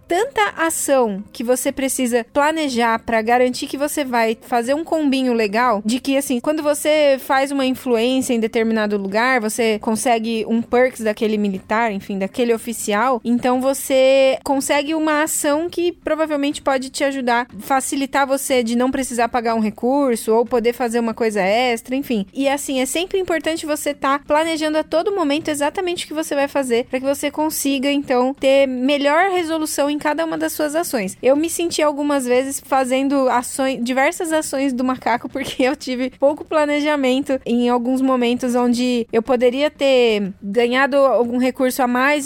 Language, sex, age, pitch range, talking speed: Portuguese, female, 20-39, 245-290 Hz, 170 wpm